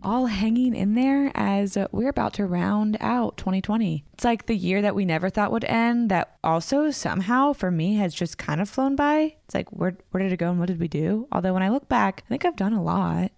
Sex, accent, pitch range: female, American, 180-245 Hz